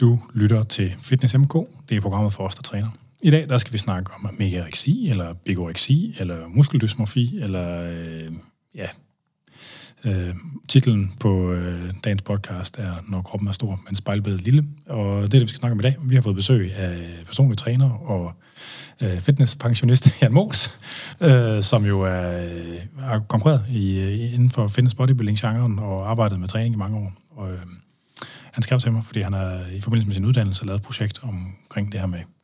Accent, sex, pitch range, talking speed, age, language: native, male, 95-125 Hz, 190 wpm, 30-49, Danish